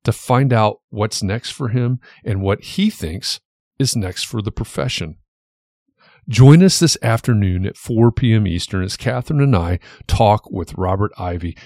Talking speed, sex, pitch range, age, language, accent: 165 wpm, male, 95-130 Hz, 40-59, English, American